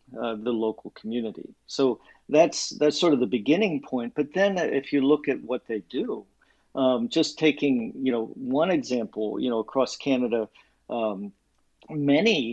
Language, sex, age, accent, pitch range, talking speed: English, male, 50-69, American, 115-140 Hz, 165 wpm